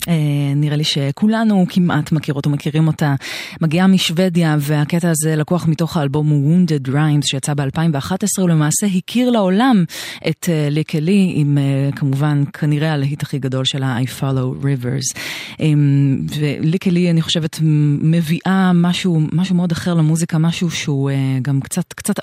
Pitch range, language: 140-170 Hz, English